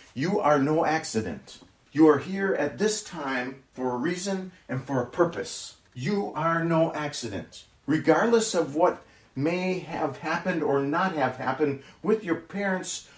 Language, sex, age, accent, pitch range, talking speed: English, male, 40-59, American, 120-165 Hz, 155 wpm